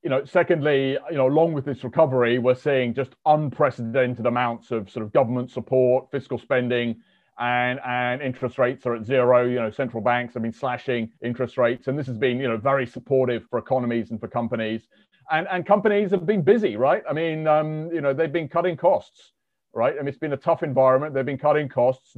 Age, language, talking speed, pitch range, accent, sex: 30-49, English, 215 wpm, 125-150 Hz, British, male